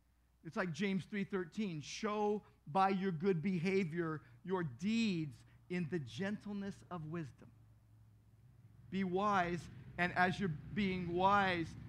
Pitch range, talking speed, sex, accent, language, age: 130-185 Hz, 115 wpm, male, American, English, 50-69